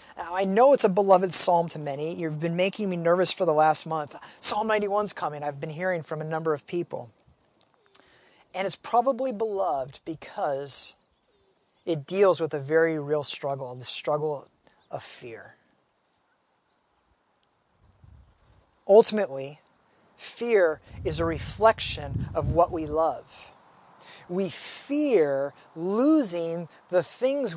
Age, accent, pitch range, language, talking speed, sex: 30-49, American, 150-195 Hz, English, 130 wpm, male